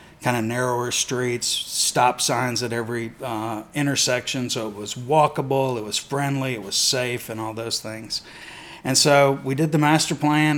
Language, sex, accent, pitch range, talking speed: English, male, American, 115-135 Hz, 175 wpm